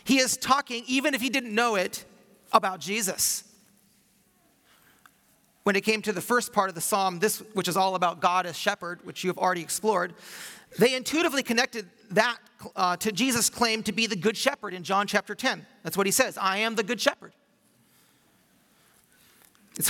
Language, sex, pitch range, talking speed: English, male, 185-235 Hz, 185 wpm